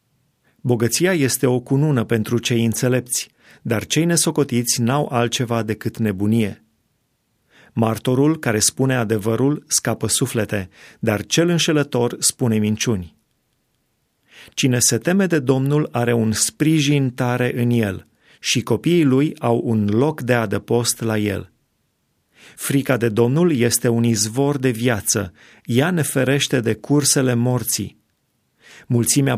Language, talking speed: Romanian, 125 wpm